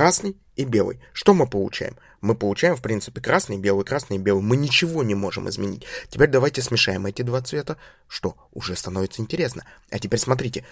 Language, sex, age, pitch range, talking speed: Russian, male, 20-39, 105-135 Hz, 180 wpm